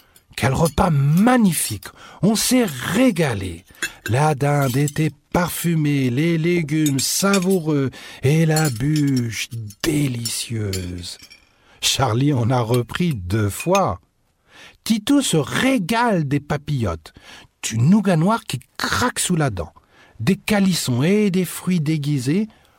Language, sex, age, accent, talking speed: French, male, 60-79, French, 110 wpm